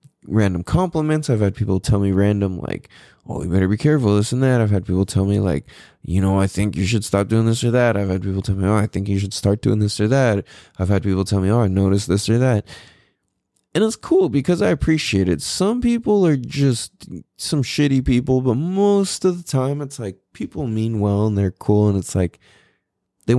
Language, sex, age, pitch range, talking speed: English, male, 20-39, 95-120 Hz, 235 wpm